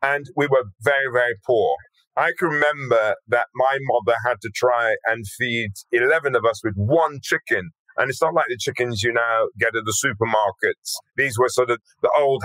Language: English